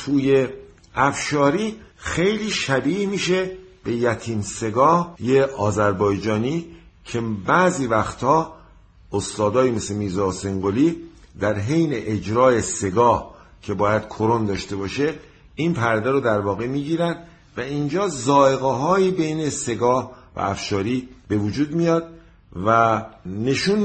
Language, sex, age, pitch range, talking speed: Persian, male, 50-69, 110-150 Hz, 110 wpm